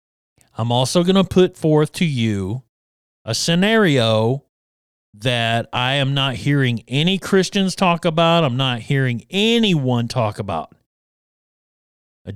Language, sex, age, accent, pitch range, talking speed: English, male, 40-59, American, 115-170 Hz, 125 wpm